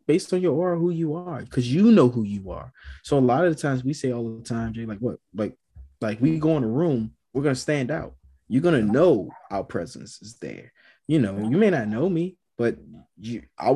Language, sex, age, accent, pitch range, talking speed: English, male, 20-39, American, 115-145 Hz, 240 wpm